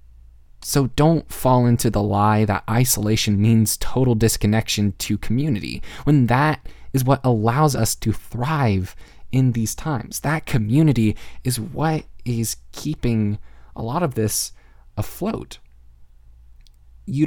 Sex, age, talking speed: male, 20-39, 125 wpm